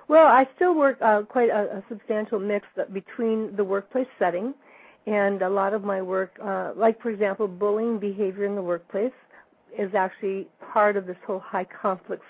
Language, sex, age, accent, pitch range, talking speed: English, female, 50-69, American, 190-220 Hz, 175 wpm